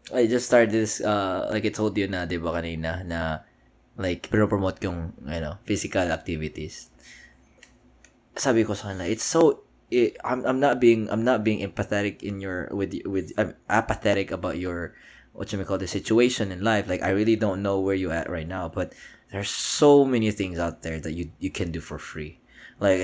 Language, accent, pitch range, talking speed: Filipino, native, 95-115 Hz, 200 wpm